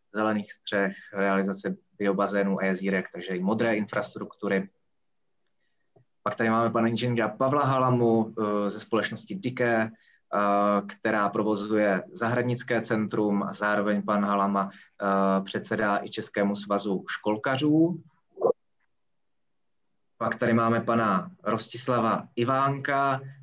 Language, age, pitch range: Czech, 20-39, 100-125 Hz